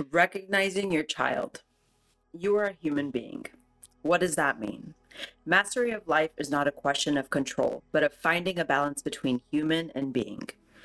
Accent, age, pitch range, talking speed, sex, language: American, 30-49, 140-175 Hz, 165 wpm, female, English